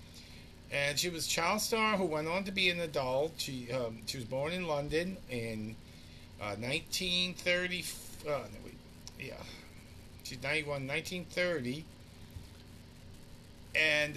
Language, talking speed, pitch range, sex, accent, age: English, 120 wpm, 95-145 Hz, male, American, 50-69